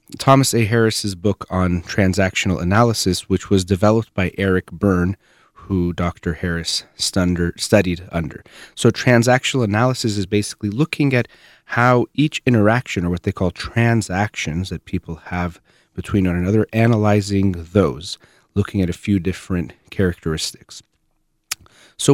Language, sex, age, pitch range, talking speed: English, male, 30-49, 90-115 Hz, 130 wpm